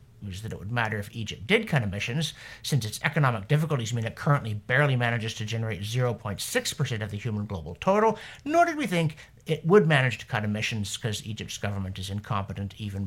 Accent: American